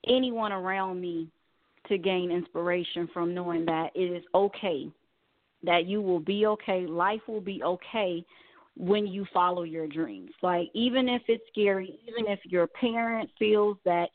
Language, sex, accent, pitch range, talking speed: English, female, American, 175-215 Hz, 155 wpm